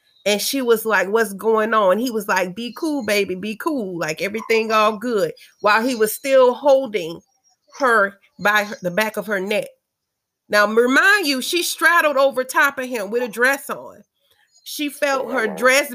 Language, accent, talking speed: English, American, 185 wpm